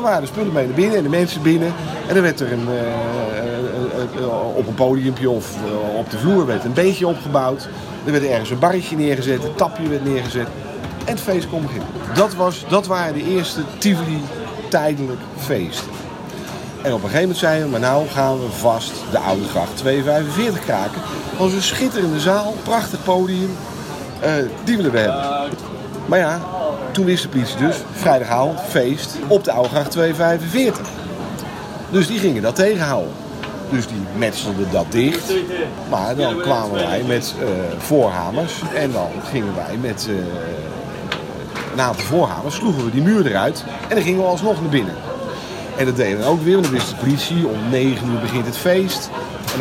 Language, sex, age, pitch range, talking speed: Dutch, male, 50-69, 125-180 Hz, 185 wpm